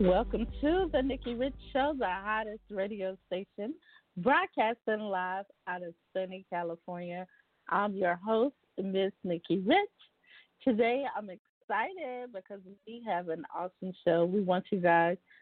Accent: American